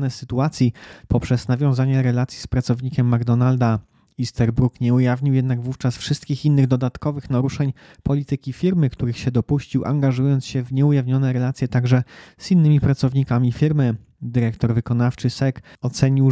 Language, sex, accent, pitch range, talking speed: Polish, male, native, 120-140 Hz, 130 wpm